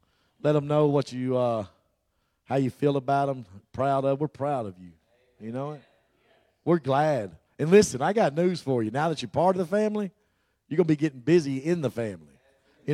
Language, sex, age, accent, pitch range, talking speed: English, male, 40-59, American, 130-165 Hz, 215 wpm